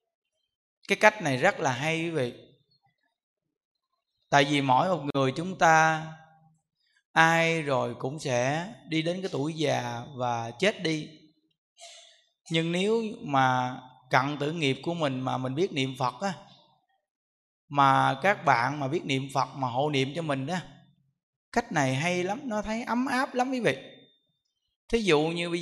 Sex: male